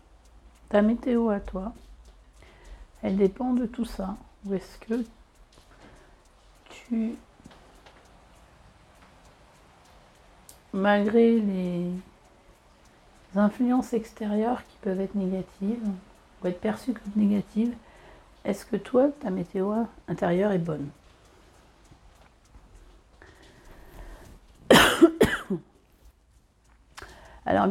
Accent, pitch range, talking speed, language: French, 170-225 Hz, 75 wpm, French